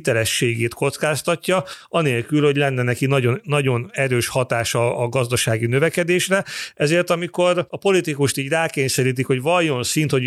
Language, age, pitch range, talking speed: Hungarian, 40-59, 125-165 Hz, 130 wpm